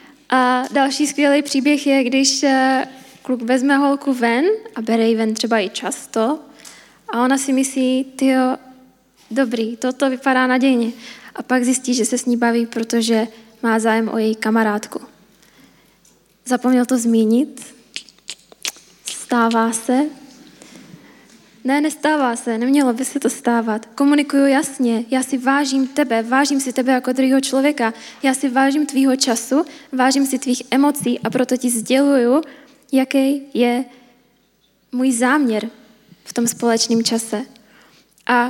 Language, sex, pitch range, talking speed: Czech, female, 235-275 Hz, 135 wpm